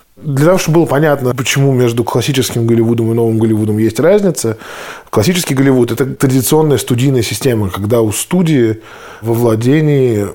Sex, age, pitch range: male, 20-39, 105-130 Hz